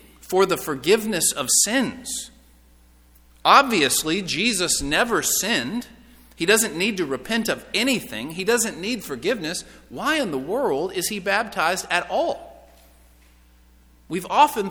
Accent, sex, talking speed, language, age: American, male, 125 wpm, English, 40-59